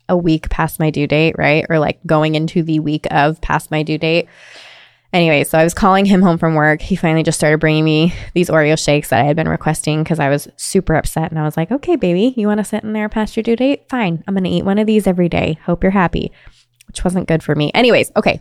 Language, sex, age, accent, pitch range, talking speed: English, female, 20-39, American, 155-190 Hz, 265 wpm